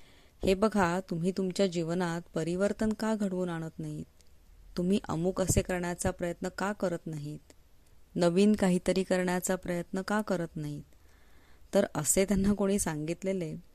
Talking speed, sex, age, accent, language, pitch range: 110 wpm, female, 20-39, native, Marathi, 150-190 Hz